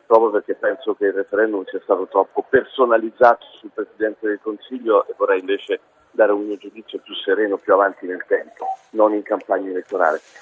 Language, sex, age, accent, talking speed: Italian, male, 40-59, native, 180 wpm